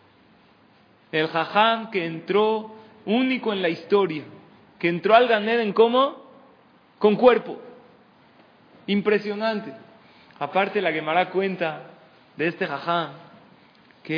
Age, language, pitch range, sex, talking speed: 30-49, Spanish, 150-200 Hz, male, 105 wpm